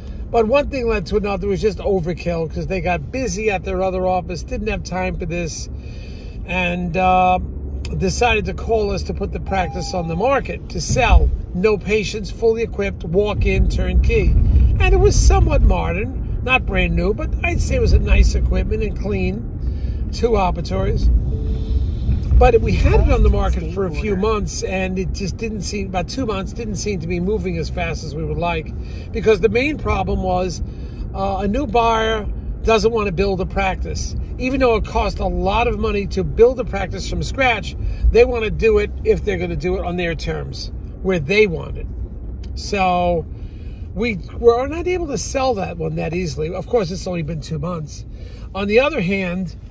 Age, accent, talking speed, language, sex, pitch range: 50-69, American, 195 wpm, English, male, 160-220 Hz